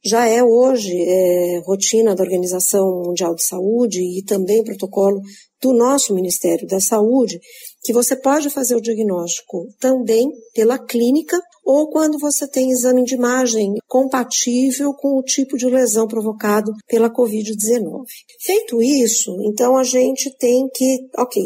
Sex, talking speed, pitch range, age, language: female, 140 wpm, 205-265 Hz, 50-69, Portuguese